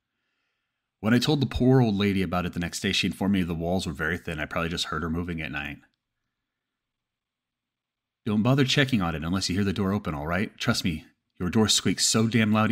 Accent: American